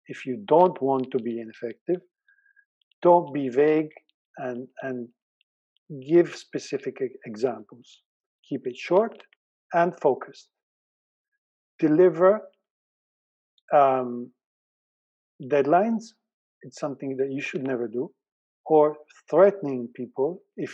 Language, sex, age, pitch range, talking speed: English, male, 50-69, 135-175 Hz, 100 wpm